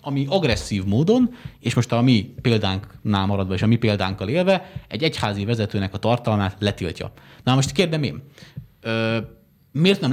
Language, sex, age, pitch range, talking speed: Hungarian, male, 30-49, 105-140 Hz, 160 wpm